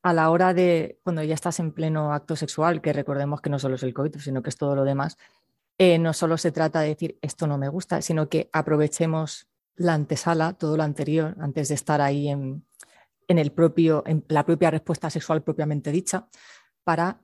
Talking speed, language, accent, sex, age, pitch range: 205 wpm, Spanish, Spanish, female, 30-49, 155-180 Hz